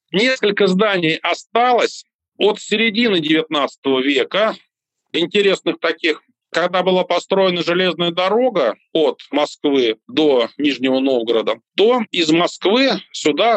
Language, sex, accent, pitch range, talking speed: Russian, male, native, 150-220 Hz, 100 wpm